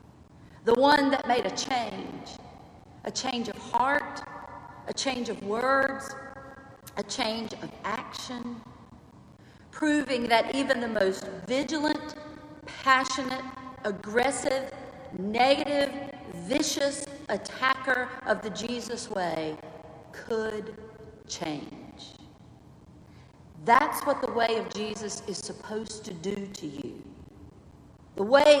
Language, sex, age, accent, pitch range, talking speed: English, female, 50-69, American, 210-270 Hz, 105 wpm